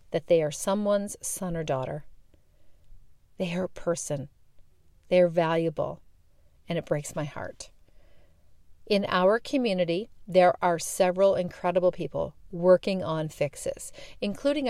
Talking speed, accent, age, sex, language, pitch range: 125 wpm, American, 40-59, female, English, 160-200 Hz